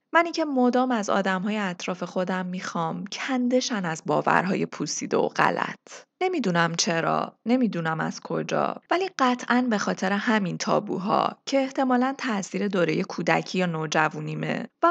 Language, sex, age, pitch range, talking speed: Persian, female, 20-39, 180-255 Hz, 135 wpm